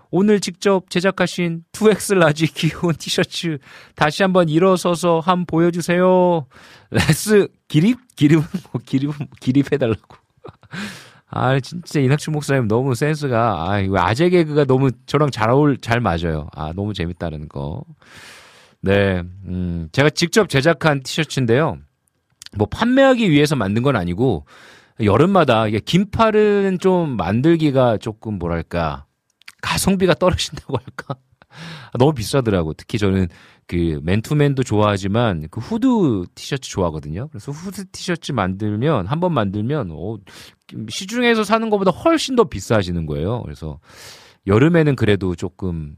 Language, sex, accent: Korean, male, native